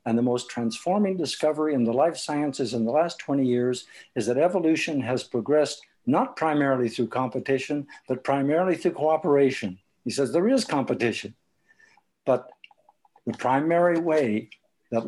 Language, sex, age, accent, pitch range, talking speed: English, male, 60-79, American, 115-155 Hz, 145 wpm